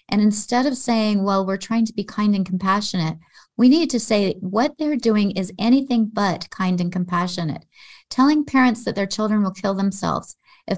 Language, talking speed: English, 190 wpm